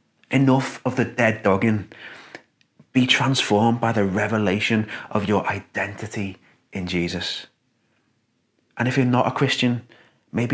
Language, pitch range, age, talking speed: English, 95-115 Hz, 30-49, 125 wpm